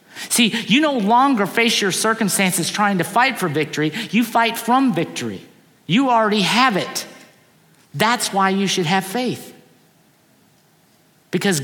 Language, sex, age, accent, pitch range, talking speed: English, male, 50-69, American, 170-220 Hz, 140 wpm